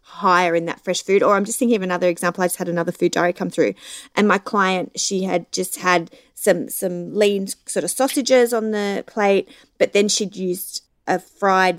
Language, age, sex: English, 30-49, female